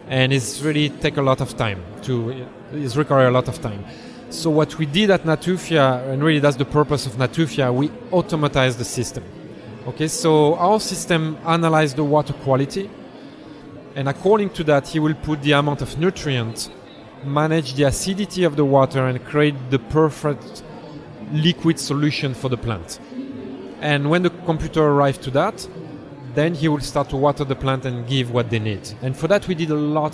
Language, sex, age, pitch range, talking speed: English, male, 30-49, 130-160 Hz, 185 wpm